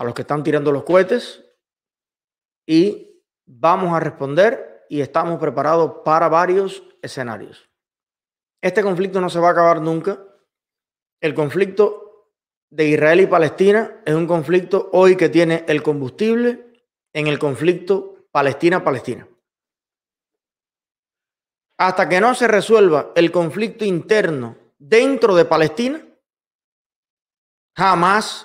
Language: Spanish